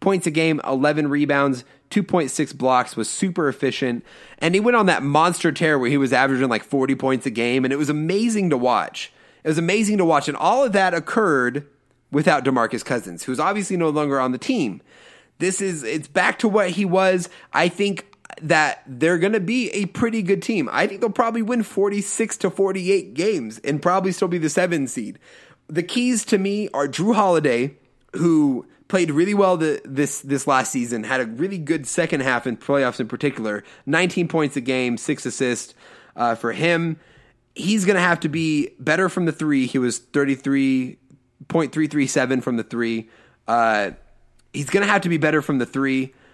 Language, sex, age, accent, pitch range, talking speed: English, male, 30-49, American, 130-185 Hz, 190 wpm